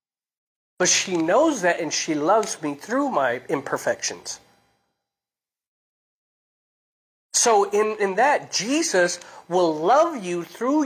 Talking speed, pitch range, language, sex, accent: 110 wpm, 195-295 Hz, English, male, American